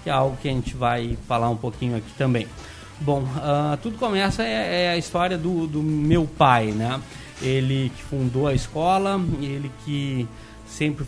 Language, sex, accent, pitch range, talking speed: Portuguese, male, Brazilian, 130-175 Hz, 175 wpm